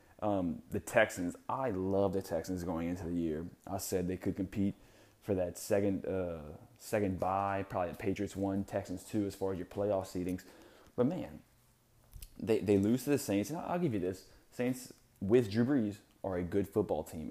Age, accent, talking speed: 20-39, American, 195 wpm